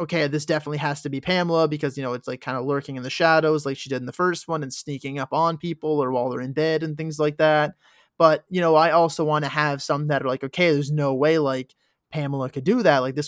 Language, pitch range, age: English, 145-165 Hz, 20-39